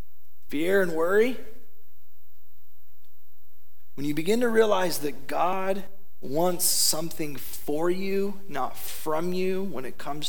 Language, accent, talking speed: English, American, 115 wpm